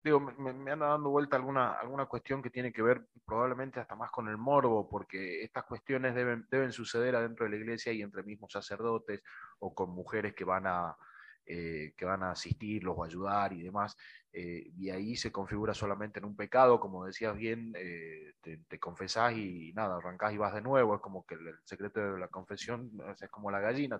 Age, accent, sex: 20-39, Argentinian, male